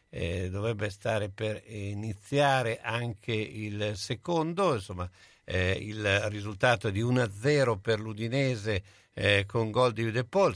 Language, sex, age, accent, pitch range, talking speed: Italian, male, 50-69, native, 100-120 Hz, 120 wpm